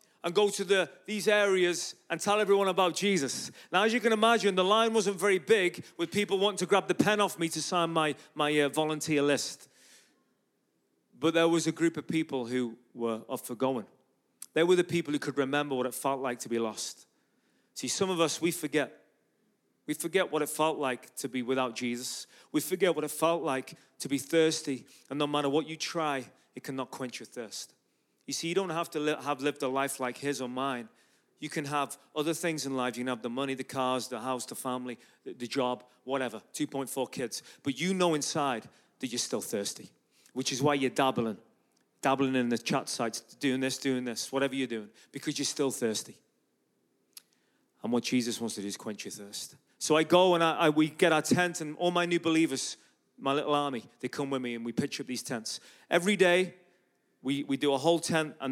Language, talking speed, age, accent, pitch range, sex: English, 215 wpm, 30-49, British, 130-170 Hz, male